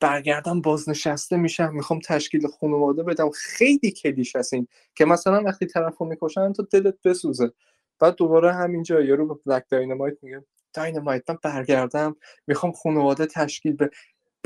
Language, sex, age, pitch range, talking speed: Persian, male, 20-39, 135-180 Hz, 135 wpm